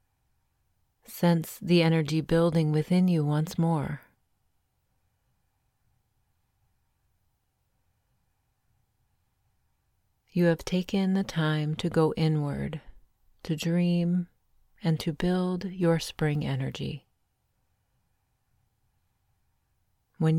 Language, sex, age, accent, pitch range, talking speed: English, female, 30-49, American, 105-160 Hz, 75 wpm